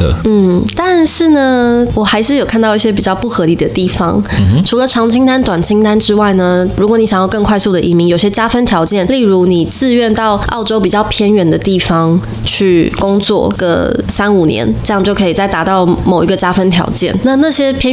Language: Chinese